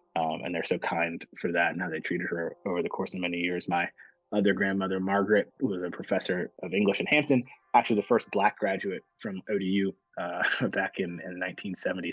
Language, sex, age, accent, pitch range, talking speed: English, male, 20-39, American, 90-110 Hz, 200 wpm